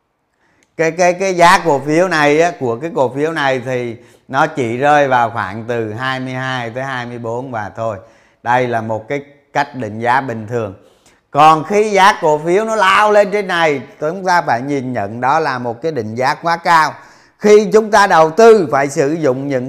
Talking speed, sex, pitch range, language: 200 wpm, male, 115-175 Hz, Vietnamese